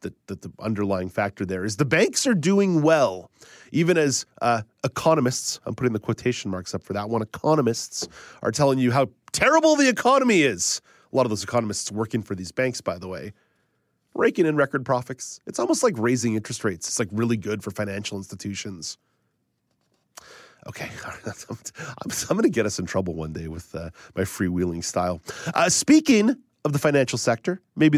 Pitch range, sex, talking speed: 100-140 Hz, male, 180 wpm